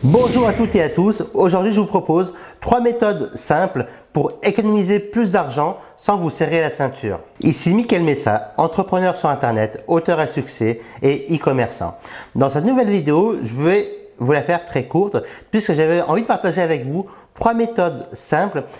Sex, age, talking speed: male, 50-69, 170 wpm